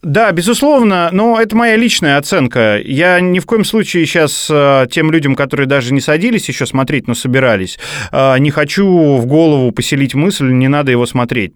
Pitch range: 130-180 Hz